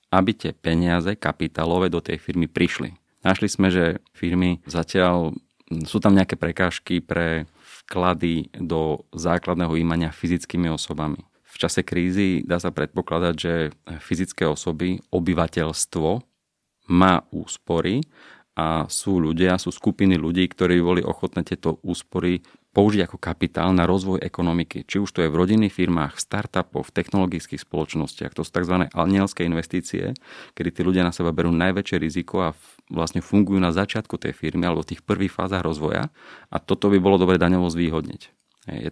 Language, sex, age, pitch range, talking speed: Slovak, male, 30-49, 85-95 Hz, 155 wpm